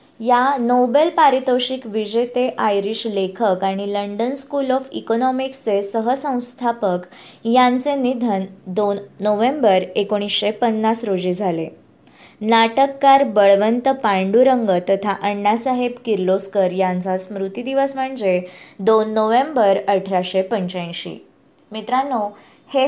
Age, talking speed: 20-39, 85 wpm